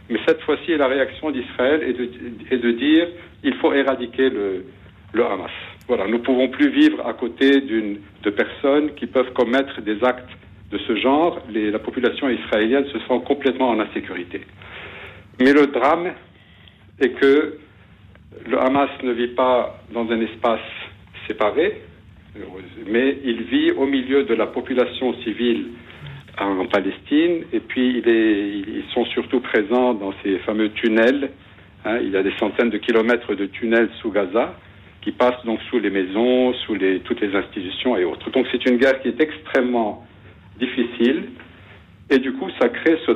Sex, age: male, 60-79